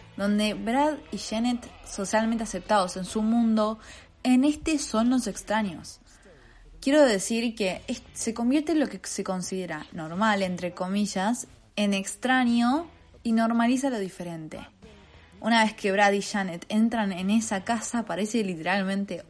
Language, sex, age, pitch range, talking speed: Spanish, female, 20-39, 180-230 Hz, 140 wpm